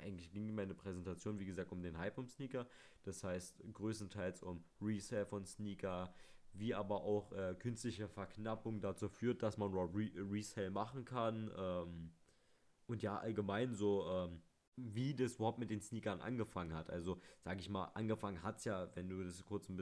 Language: German